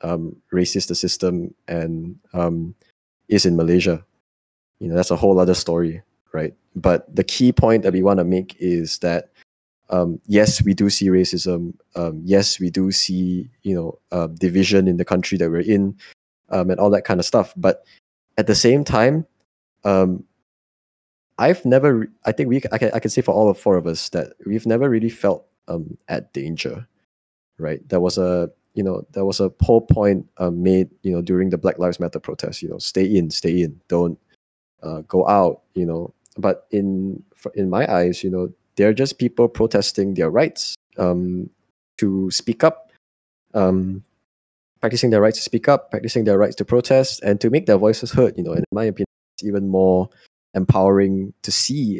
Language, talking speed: English, 195 wpm